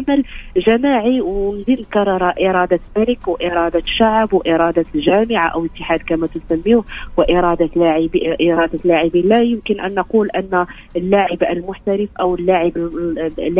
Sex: female